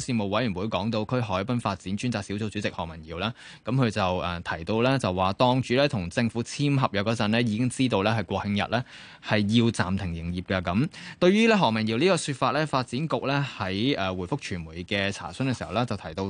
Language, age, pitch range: Chinese, 20-39, 100-135 Hz